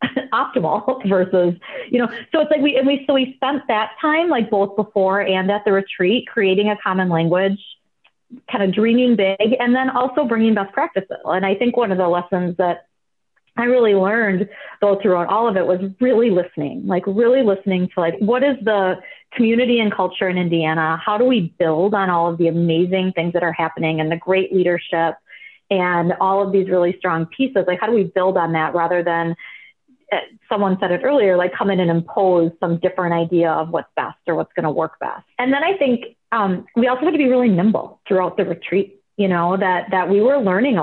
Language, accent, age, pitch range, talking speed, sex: English, American, 30-49, 180-235 Hz, 215 wpm, female